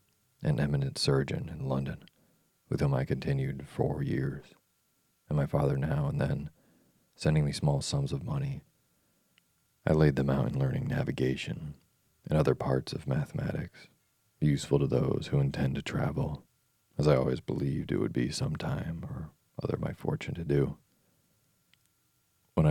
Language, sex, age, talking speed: English, male, 40-59, 155 wpm